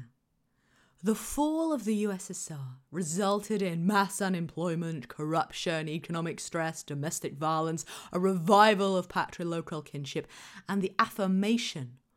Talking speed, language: 110 wpm, English